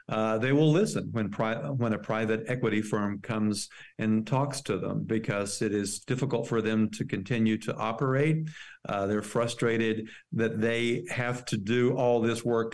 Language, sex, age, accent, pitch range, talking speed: English, male, 50-69, American, 110-135 Hz, 170 wpm